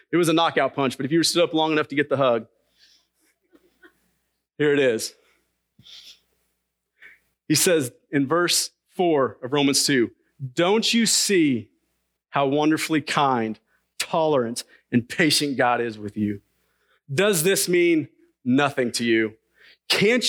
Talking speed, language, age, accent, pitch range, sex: 140 wpm, English, 40-59, American, 130-205 Hz, male